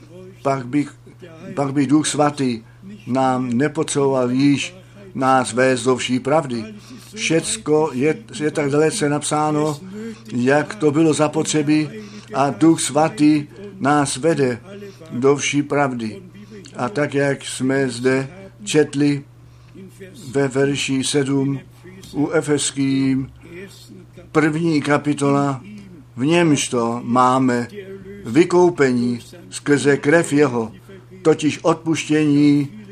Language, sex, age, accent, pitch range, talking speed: Czech, male, 50-69, native, 120-150 Hz, 95 wpm